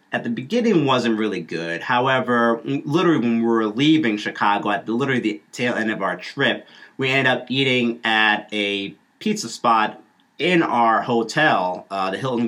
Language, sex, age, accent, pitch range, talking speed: English, male, 40-59, American, 105-140 Hz, 175 wpm